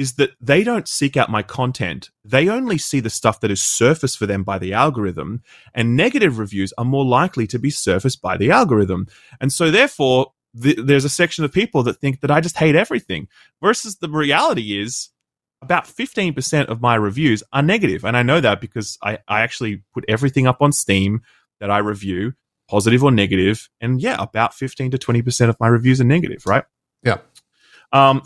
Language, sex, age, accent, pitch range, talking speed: English, male, 20-39, Australian, 110-160 Hz, 195 wpm